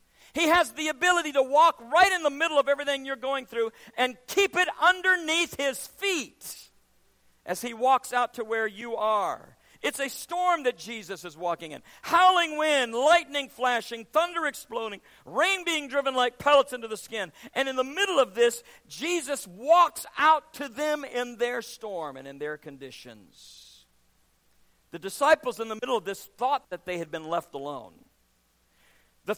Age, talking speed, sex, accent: 50-69, 170 wpm, male, American